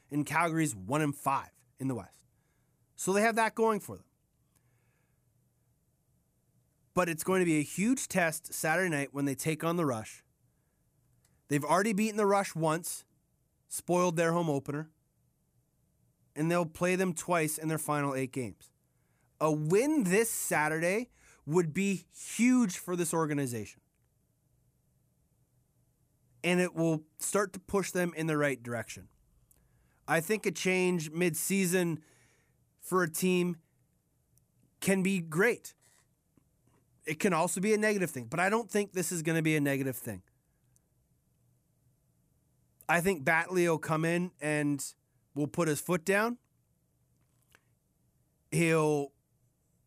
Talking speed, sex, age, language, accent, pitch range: 135 wpm, male, 30-49, English, American, 145-185 Hz